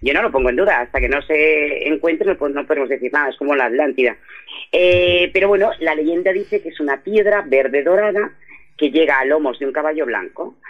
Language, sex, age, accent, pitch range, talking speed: Spanish, female, 40-59, Spanish, 145-205 Hz, 220 wpm